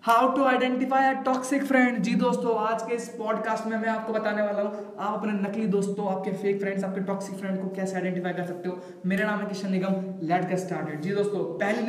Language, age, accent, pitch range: Hindi, 20-39, native, 185-215 Hz